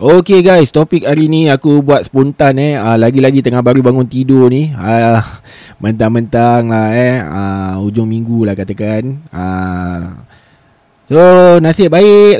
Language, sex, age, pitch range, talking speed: Malay, male, 20-39, 115-145 Hz, 140 wpm